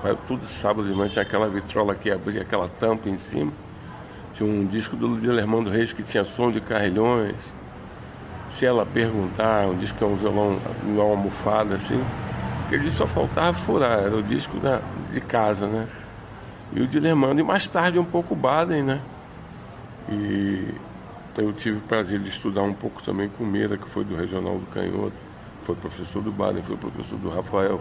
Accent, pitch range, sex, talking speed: Brazilian, 95-110 Hz, male, 190 wpm